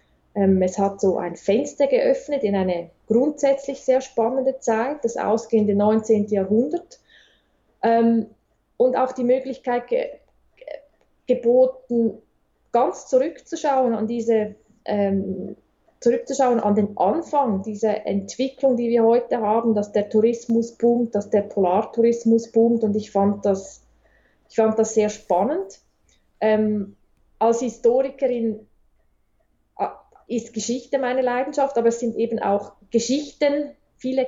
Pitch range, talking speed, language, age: 200-245 Hz, 115 wpm, German, 20-39